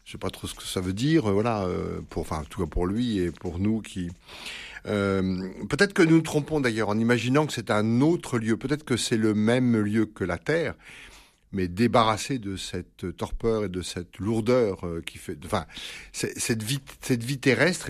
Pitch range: 95-120 Hz